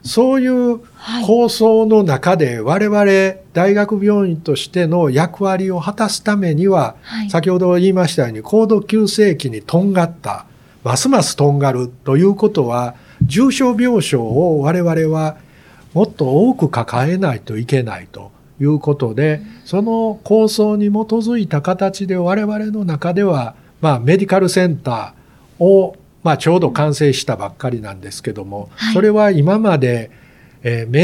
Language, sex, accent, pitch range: Japanese, male, native, 130-195 Hz